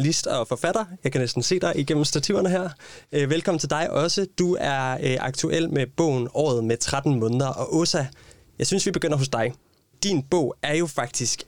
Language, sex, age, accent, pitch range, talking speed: Danish, male, 20-39, native, 125-155 Hz, 195 wpm